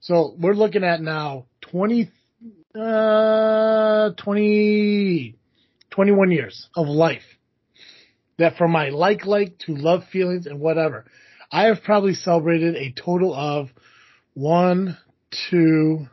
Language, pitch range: English, 140-180 Hz